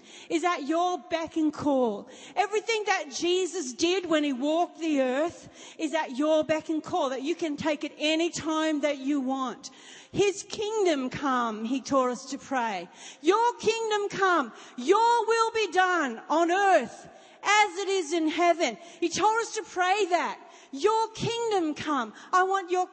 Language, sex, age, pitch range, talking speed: English, female, 40-59, 275-360 Hz, 170 wpm